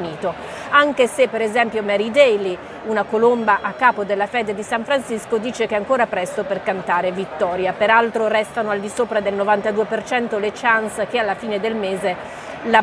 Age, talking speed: 30-49, 180 wpm